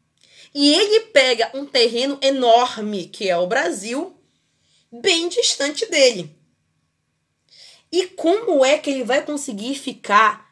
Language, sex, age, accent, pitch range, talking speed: Portuguese, female, 20-39, Brazilian, 235-345 Hz, 120 wpm